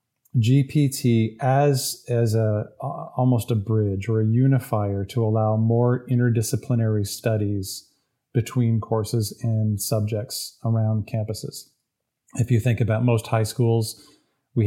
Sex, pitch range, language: male, 110-125 Hz, English